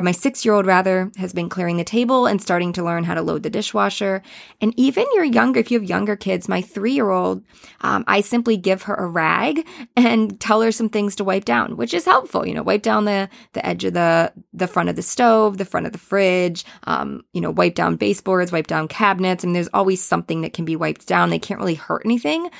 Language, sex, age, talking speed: English, female, 20-39, 240 wpm